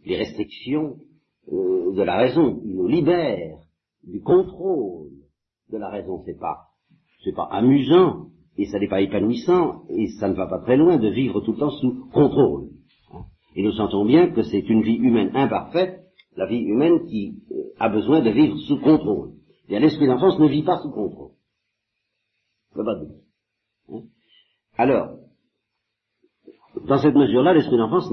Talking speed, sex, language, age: 165 wpm, male, French, 50-69